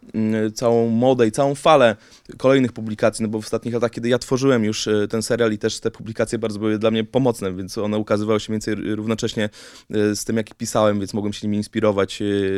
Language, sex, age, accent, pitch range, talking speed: Polish, male, 20-39, native, 105-125 Hz, 210 wpm